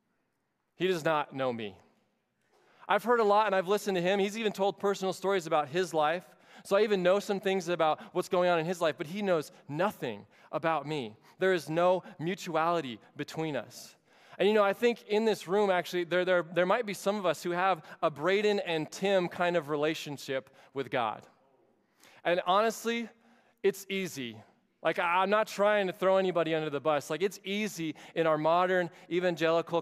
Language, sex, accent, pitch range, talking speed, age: English, male, American, 160-195 Hz, 195 wpm, 20-39